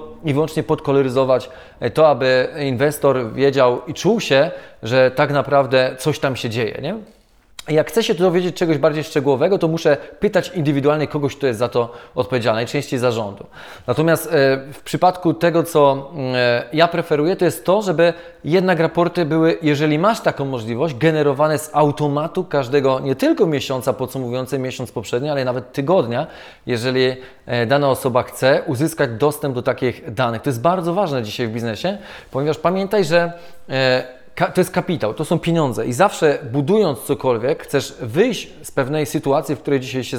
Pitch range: 130-170 Hz